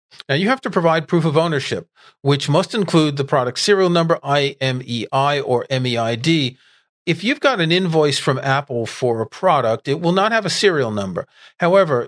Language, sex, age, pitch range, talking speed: English, male, 40-59, 125-160 Hz, 180 wpm